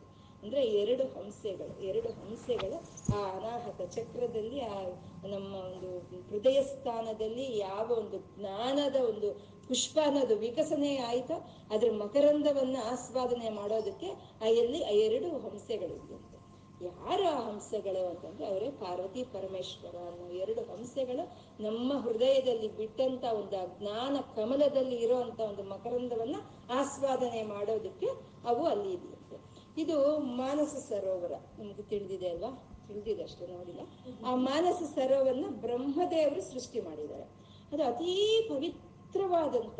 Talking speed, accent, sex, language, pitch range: 105 wpm, native, female, Kannada, 215-290 Hz